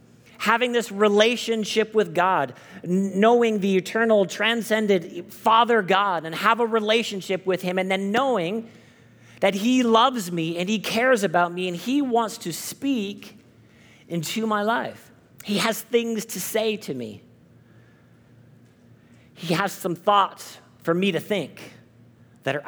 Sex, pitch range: male, 170-220 Hz